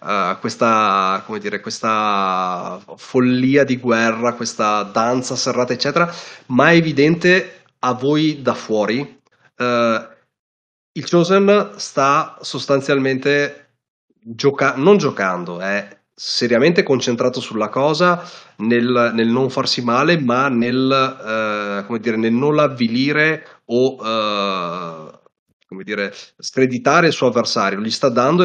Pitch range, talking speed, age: 115-140 Hz, 120 wpm, 30-49